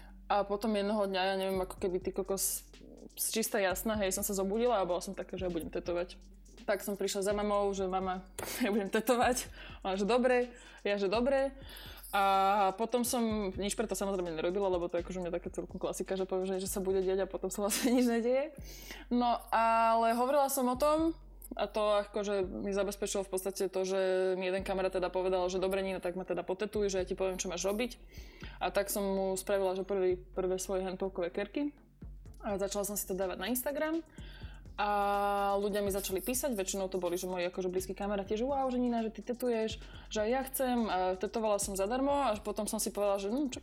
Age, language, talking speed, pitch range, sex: 20-39, Slovak, 215 wpm, 190-220 Hz, female